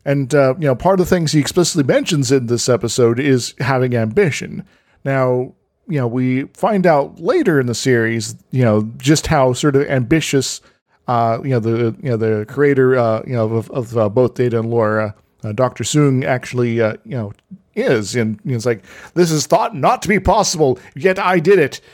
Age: 40-59